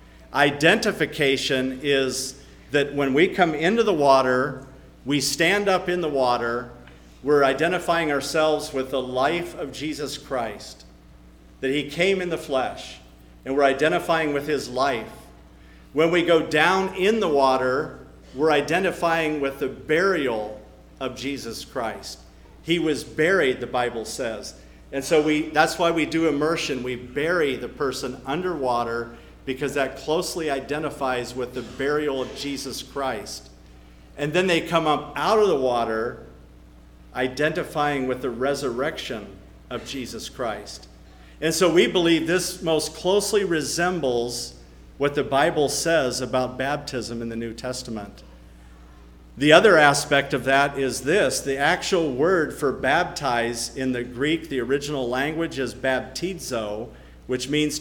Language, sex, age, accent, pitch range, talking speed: English, male, 50-69, American, 120-155 Hz, 140 wpm